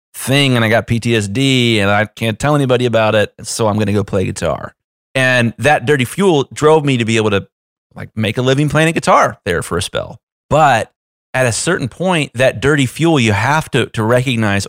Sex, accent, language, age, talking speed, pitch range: male, American, English, 30-49, 215 wpm, 105-135 Hz